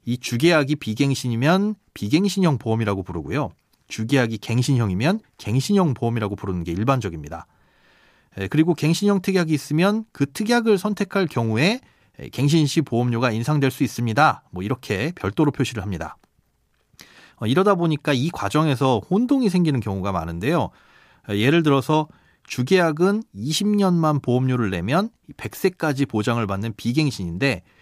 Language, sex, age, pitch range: Korean, male, 30-49, 115-170 Hz